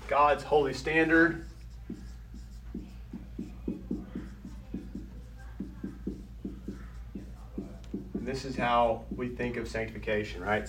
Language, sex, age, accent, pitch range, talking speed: English, male, 40-59, American, 105-145 Hz, 60 wpm